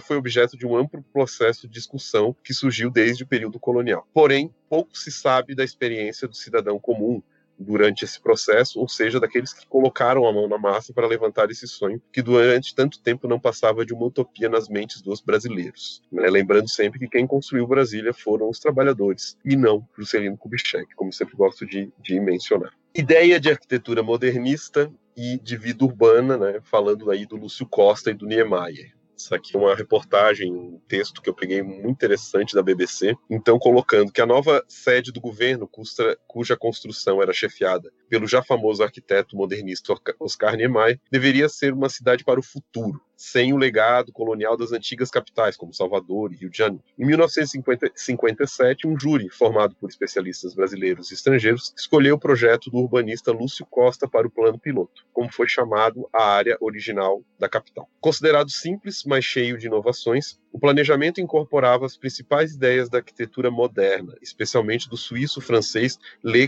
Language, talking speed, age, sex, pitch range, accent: Portuguese, 170 wpm, 30-49, male, 110-140 Hz, Brazilian